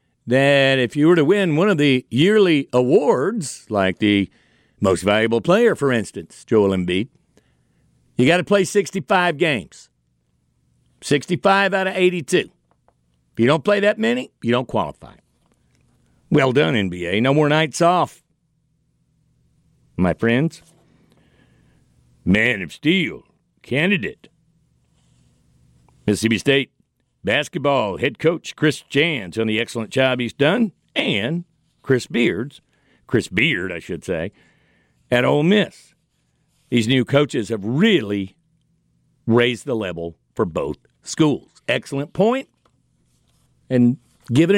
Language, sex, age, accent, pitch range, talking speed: English, male, 60-79, American, 95-160 Hz, 120 wpm